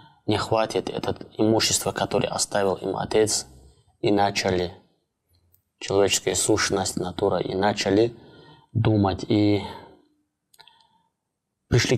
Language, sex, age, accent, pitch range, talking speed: Russian, male, 20-39, native, 95-110 Hz, 90 wpm